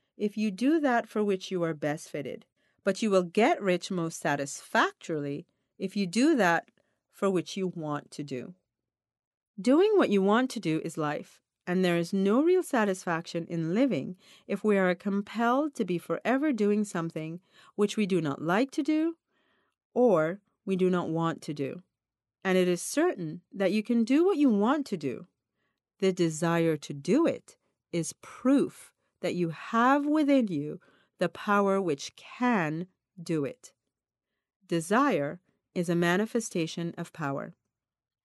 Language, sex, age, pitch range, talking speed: English, female, 40-59, 165-230 Hz, 160 wpm